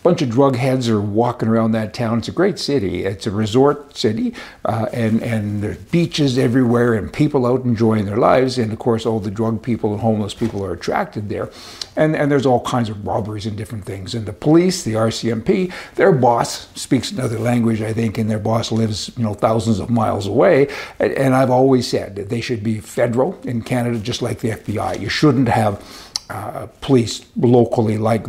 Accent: American